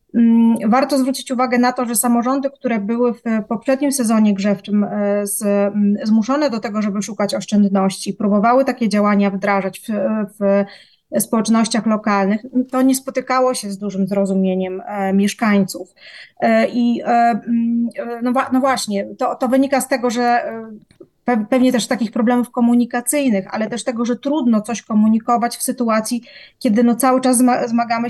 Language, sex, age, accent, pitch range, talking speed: Polish, female, 20-39, native, 215-255 Hz, 135 wpm